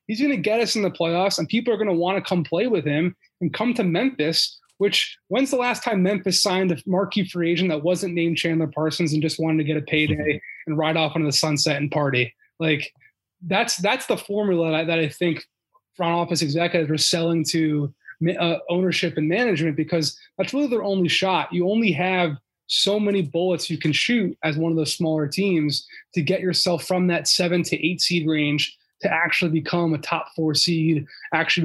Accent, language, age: American, English, 20-39